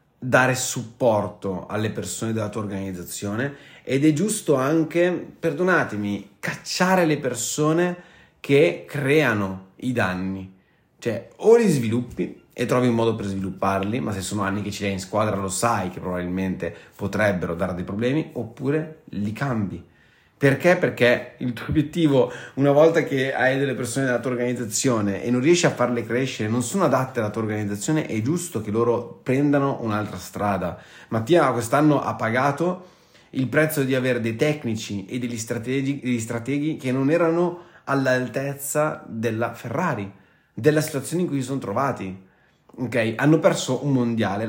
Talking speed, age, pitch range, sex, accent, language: 155 wpm, 30-49, 100-145 Hz, male, native, Italian